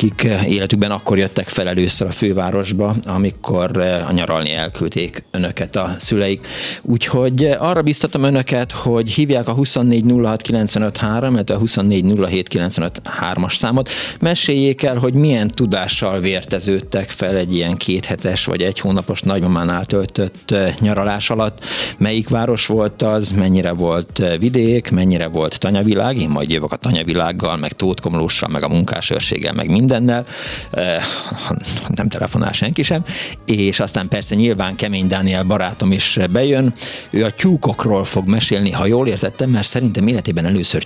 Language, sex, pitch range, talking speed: Hungarian, male, 95-120 Hz, 130 wpm